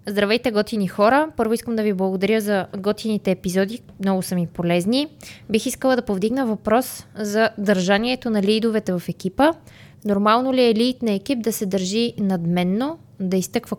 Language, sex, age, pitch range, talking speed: Bulgarian, female, 20-39, 185-235 Hz, 165 wpm